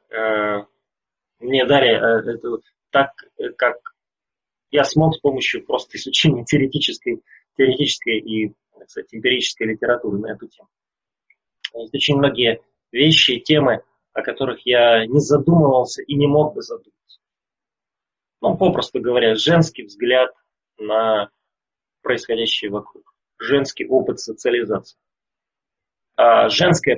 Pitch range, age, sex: 125-165 Hz, 20-39, male